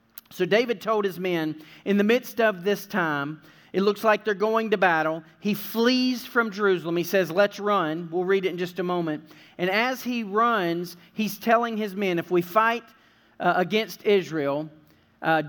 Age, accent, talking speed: 40-59, American, 185 wpm